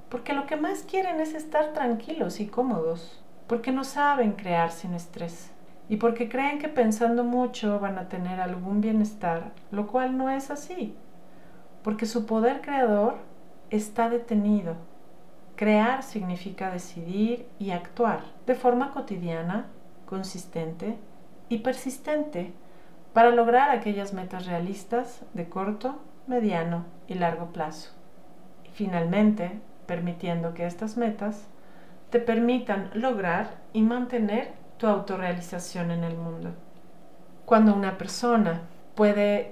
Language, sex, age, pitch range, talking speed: Spanish, female, 40-59, 180-235 Hz, 120 wpm